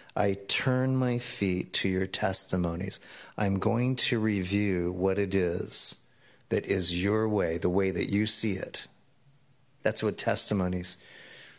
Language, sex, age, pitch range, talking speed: English, male, 40-59, 95-125 Hz, 140 wpm